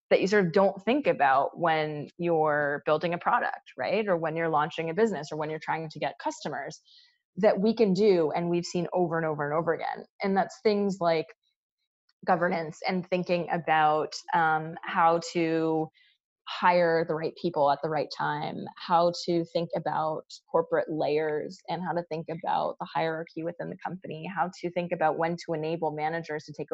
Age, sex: 20-39, female